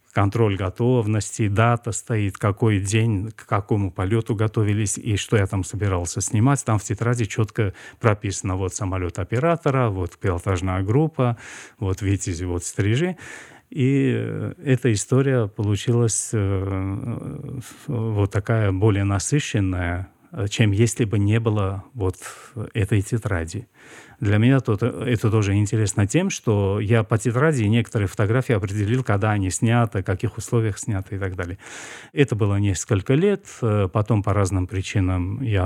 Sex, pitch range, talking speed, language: male, 100-120 Hz, 135 wpm, Russian